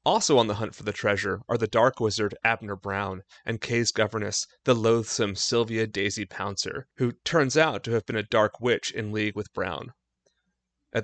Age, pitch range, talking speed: 30-49, 105-130 Hz, 190 wpm